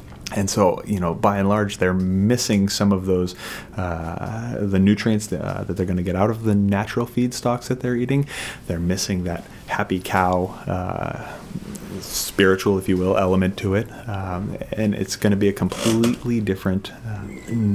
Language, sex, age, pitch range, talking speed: English, male, 30-49, 90-105 Hz, 175 wpm